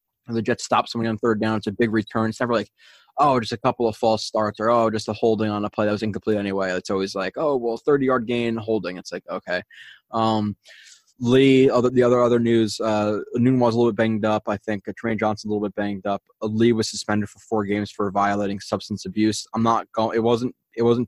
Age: 20-39